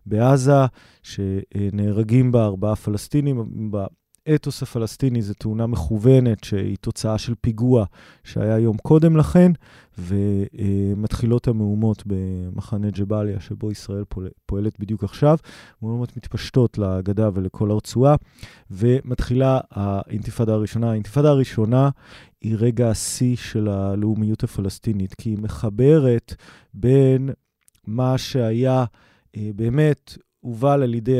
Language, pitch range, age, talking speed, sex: Hebrew, 105-135 Hz, 20-39, 100 wpm, male